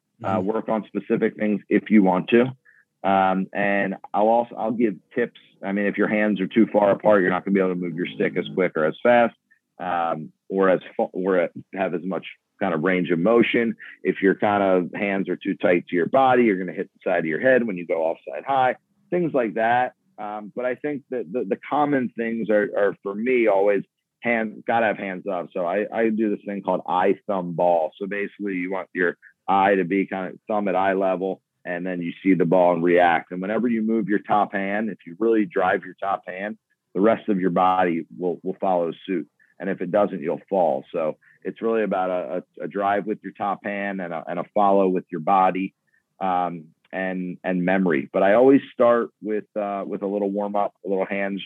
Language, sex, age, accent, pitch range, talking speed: English, male, 40-59, American, 95-110 Hz, 230 wpm